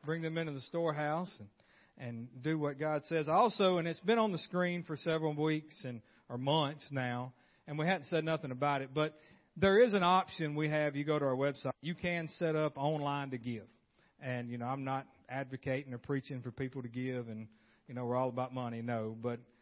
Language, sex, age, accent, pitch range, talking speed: English, male, 40-59, American, 125-155 Hz, 220 wpm